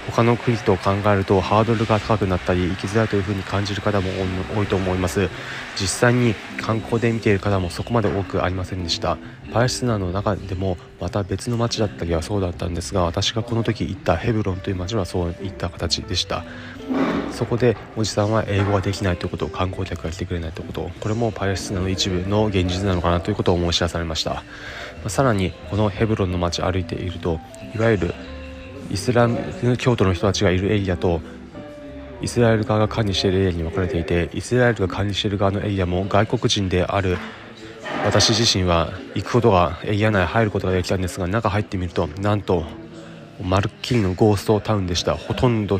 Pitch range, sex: 90-110 Hz, male